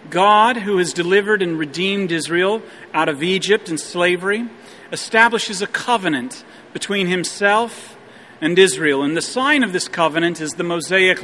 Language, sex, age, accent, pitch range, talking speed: English, male, 40-59, American, 165-200 Hz, 150 wpm